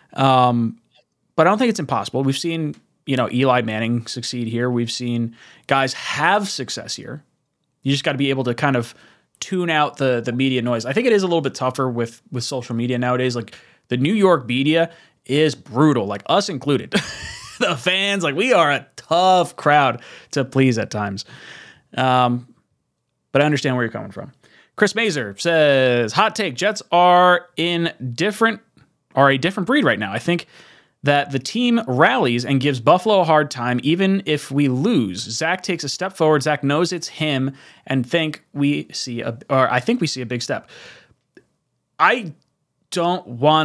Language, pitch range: English, 125-165 Hz